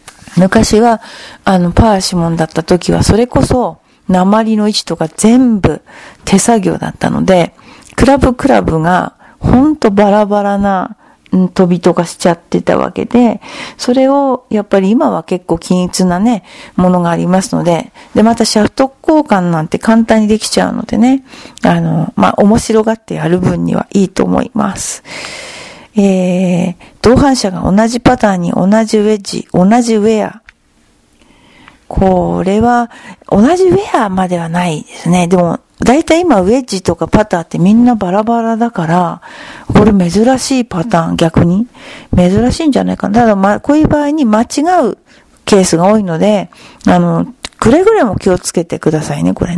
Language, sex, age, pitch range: Japanese, female, 40-59, 180-240 Hz